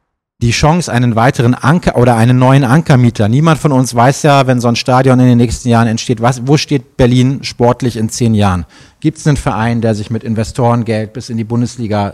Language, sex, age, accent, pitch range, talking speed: German, male, 40-59, German, 120-140 Hz, 215 wpm